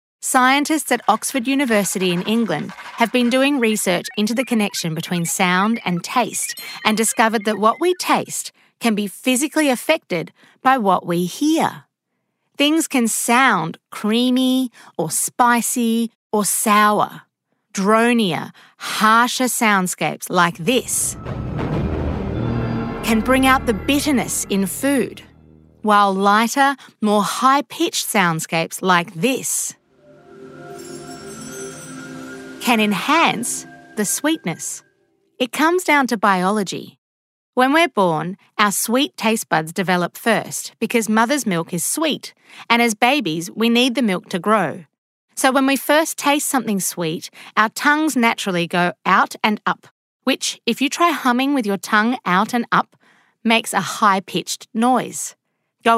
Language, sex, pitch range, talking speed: English, female, 195-270 Hz, 130 wpm